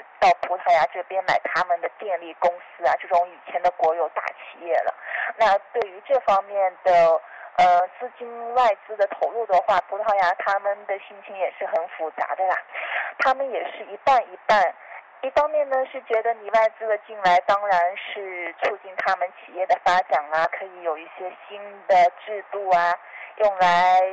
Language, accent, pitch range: Chinese, native, 180-225 Hz